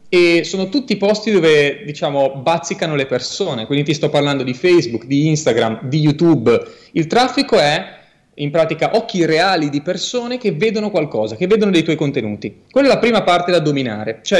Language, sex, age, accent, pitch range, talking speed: Italian, male, 30-49, native, 135-185 Hz, 185 wpm